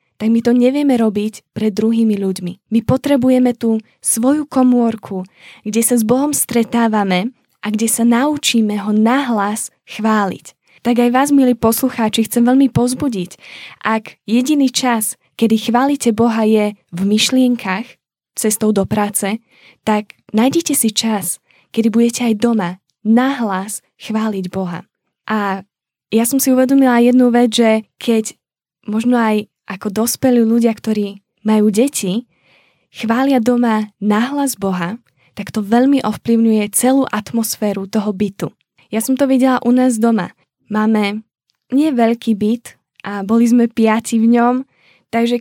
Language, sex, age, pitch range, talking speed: Czech, female, 10-29, 210-245 Hz, 135 wpm